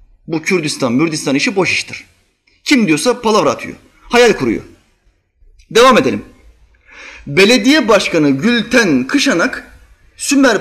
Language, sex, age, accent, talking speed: Turkish, male, 30-49, native, 105 wpm